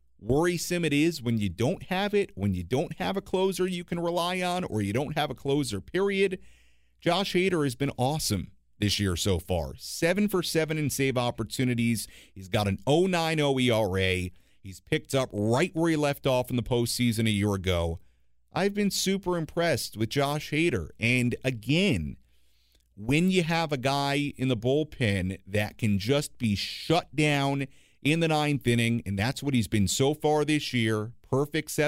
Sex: male